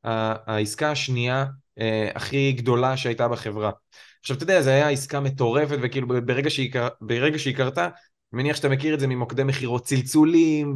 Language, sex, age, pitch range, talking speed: Hebrew, male, 20-39, 125-160 Hz, 155 wpm